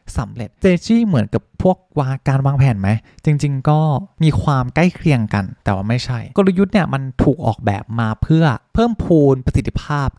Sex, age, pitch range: male, 20-39, 115-160 Hz